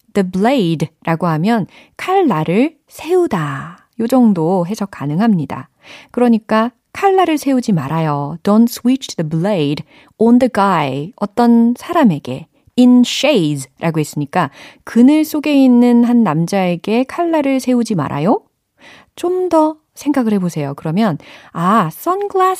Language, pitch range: Korean, 160-250 Hz